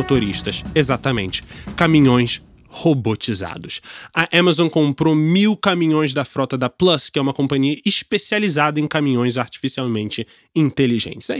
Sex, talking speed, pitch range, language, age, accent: male, 115 wpm, 130-170 Hz, Portuguese, 20-39, Brazilian